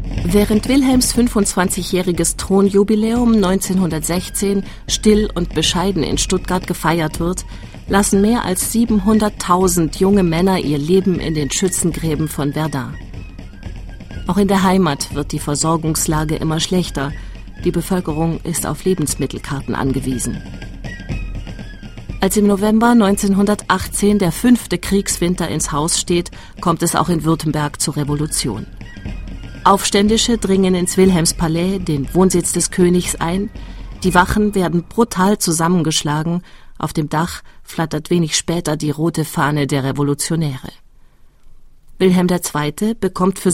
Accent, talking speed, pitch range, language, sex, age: German, 120 wpm, 155-195 Hz, German, female, 40-59